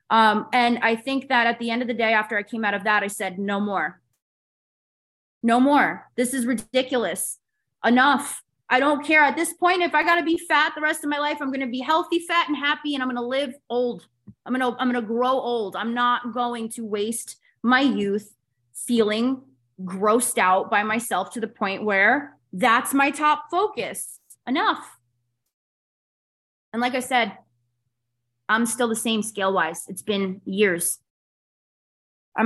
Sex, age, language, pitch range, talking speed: female, 20-39, English, 200-255 Hz, 185 wpm